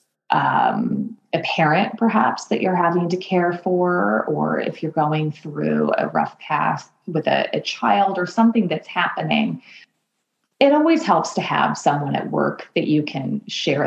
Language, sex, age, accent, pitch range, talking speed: English, female, 30-49, American, 155-225 Hz, 165 wpm